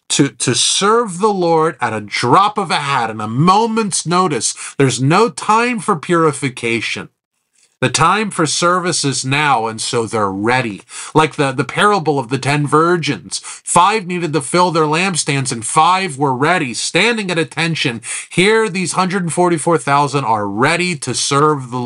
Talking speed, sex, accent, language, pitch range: 160 wpm, male, American, English, 130-180 Hz